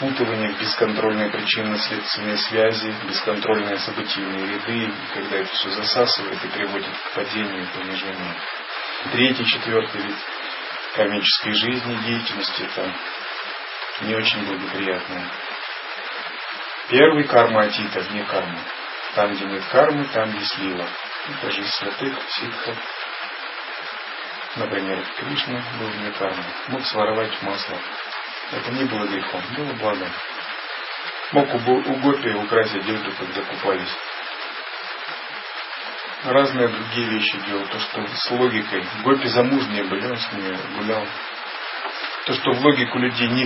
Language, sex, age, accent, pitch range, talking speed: Russian, male, 30-49, native, 105-125 Hz, 115 wpm